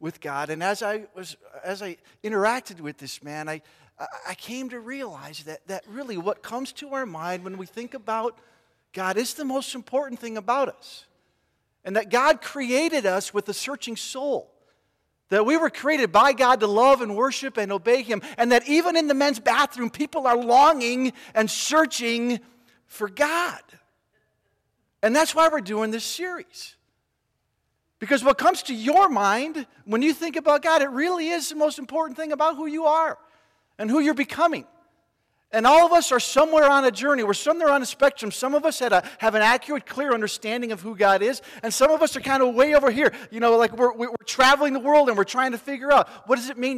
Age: 50-69